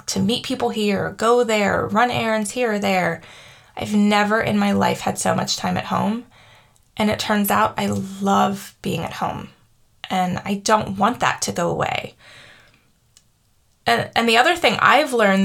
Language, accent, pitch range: English, American, 190-240 Hz